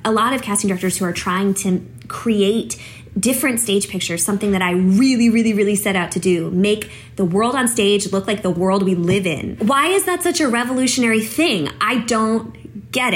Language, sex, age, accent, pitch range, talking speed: English, female, 20-39, American, 180-225 Hz, 205 wpm